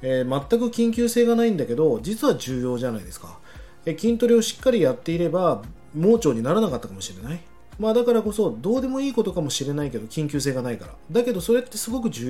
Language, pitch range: Japanese, 130-215 Hz